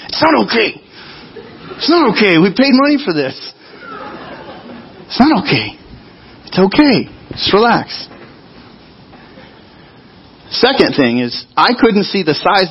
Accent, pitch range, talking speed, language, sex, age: American, 155-215 Hz, 125 wpm, English, male, 40-59